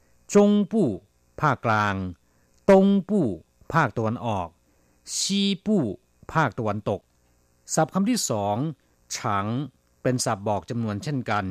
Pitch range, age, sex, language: 95-135 Hz, 60-79, male, Thai